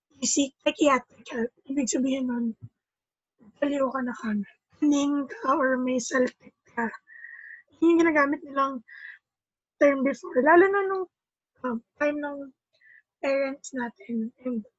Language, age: Filipino, 20-39